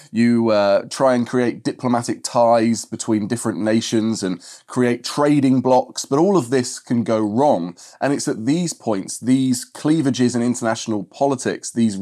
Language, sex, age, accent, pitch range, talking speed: English, male, 20-39, British, 115-140 Hz, 160 wpm